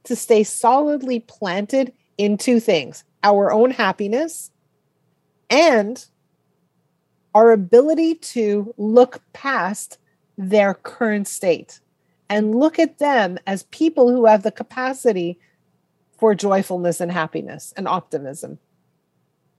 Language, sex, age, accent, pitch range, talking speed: English, female, 40-59, American, 190-245 Hz, 105 wpm